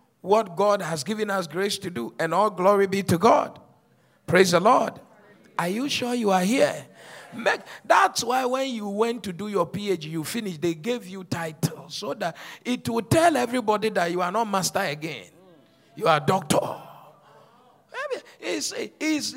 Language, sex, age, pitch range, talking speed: English, male, 50-69, 155-230 Hz, 175 wpm